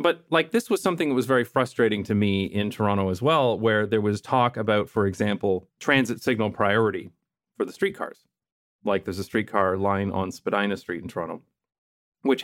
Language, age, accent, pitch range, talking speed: English, 30-49, American, 105-145 Hz, 190 wpm